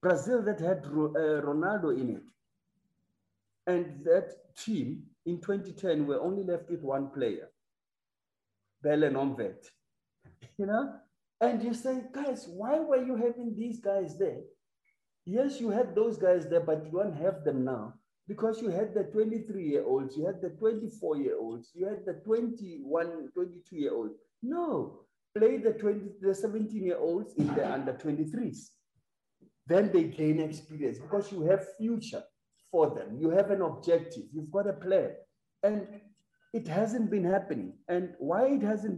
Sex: male